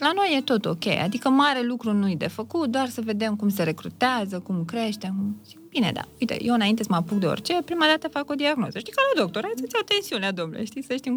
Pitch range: 180-245 Hz